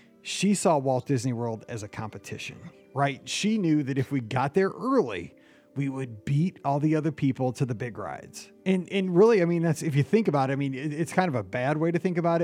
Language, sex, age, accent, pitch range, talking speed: English, male, 30-49, American, 135-175 Hz, 240 wpm